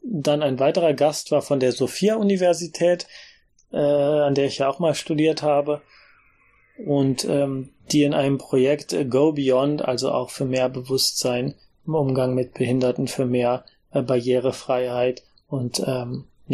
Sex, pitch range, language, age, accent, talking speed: male, 130-160 Hz, German, 30-49, German, 145 wpm